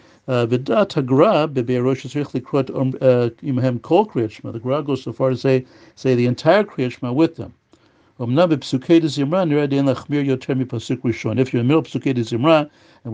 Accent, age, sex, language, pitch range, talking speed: American, 60-79, male, English, 115-135 Hz, 110 wpm